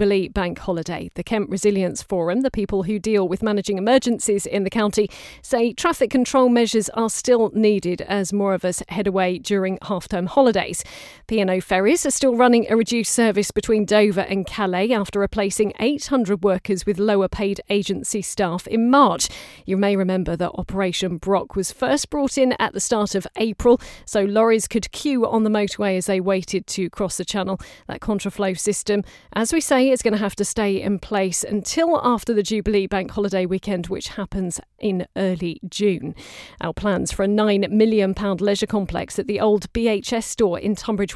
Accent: British